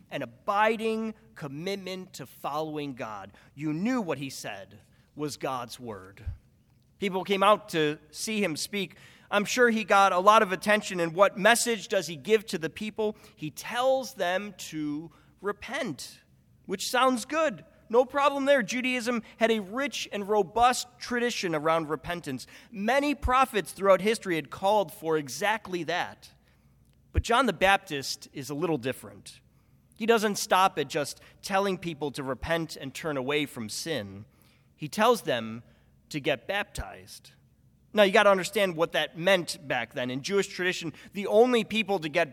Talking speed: 160 wpm